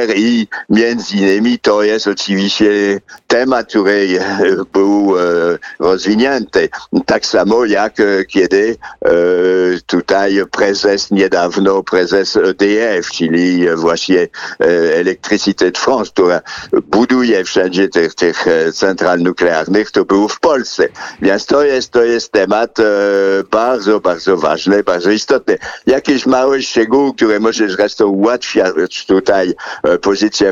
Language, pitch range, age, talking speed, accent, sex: Polish, 95-115 Hz, 60-79, 120 wpm, French, male